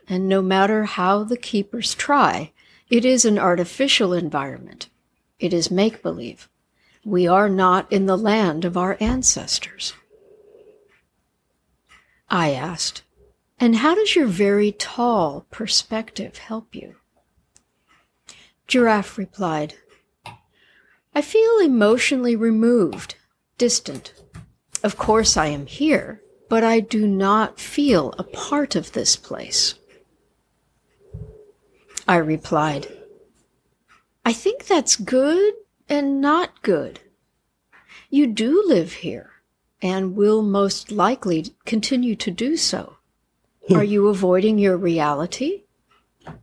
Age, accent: 60-79, American